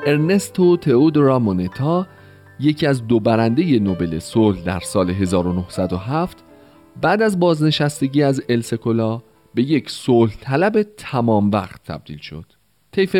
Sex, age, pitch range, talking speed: male, 40-59, 95-145 Hz, 120 wpm